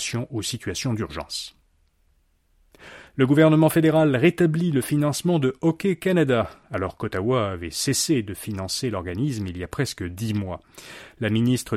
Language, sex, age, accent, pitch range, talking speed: French, male, 30-49, French, 105-150 Hz, 140 wpm